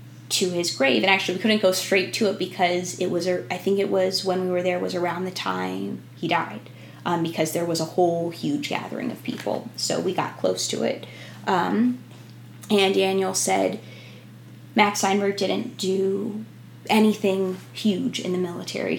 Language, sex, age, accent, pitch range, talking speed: English, female, 20-39, American, 155-200 Hz, 185 wpm